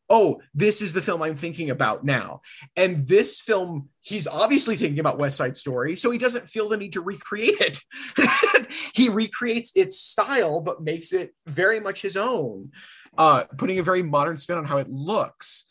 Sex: male